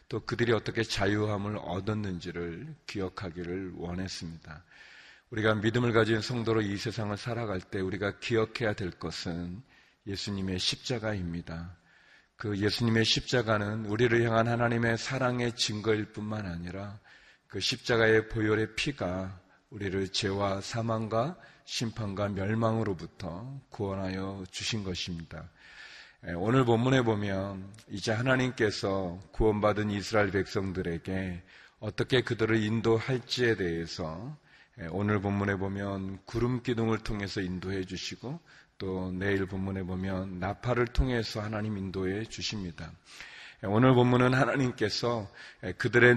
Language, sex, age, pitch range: Korean, male, 30-49, 95-120 Hz